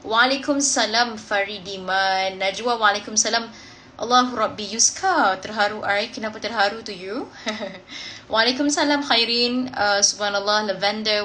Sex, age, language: female, 20-39, Malay